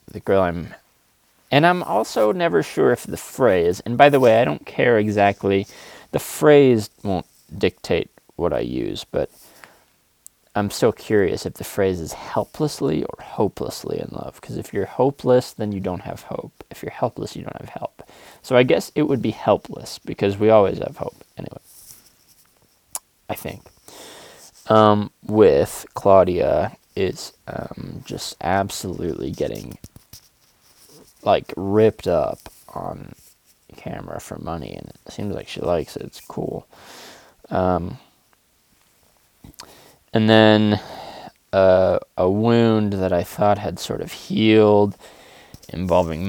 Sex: male